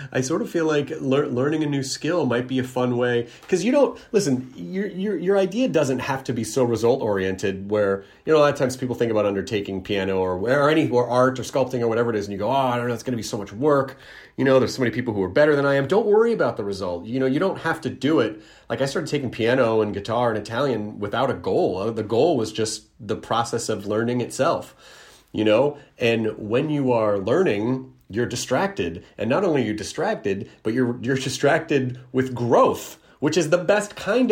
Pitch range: 110-140 Hz